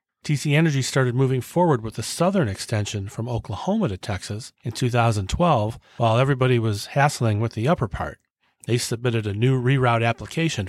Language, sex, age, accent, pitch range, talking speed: English, male, 40-59, American, 110-150 Hz, 165 wpm